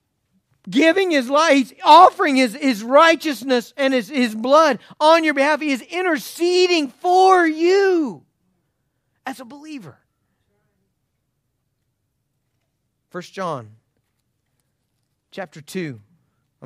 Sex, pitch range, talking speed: male, 125-190 Hz, 95 wpm